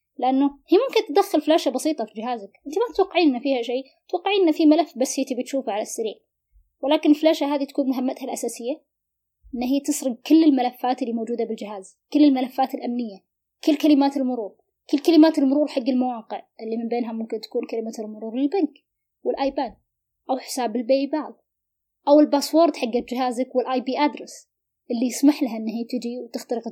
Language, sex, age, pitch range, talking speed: Arabic, female, 20-39, 245-295 Hz, 160 wpm